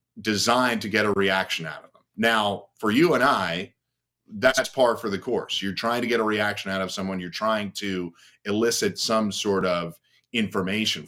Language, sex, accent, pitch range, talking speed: English, male, American, 95-115 Hz, 190 wpm